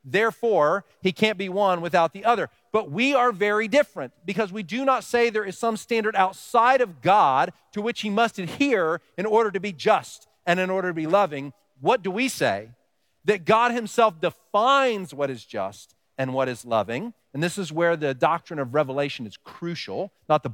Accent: American